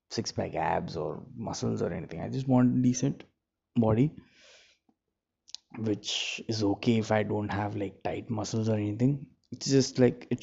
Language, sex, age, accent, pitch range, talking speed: English, male, 20-39, Indian, 105-120 Hz, 155 wpm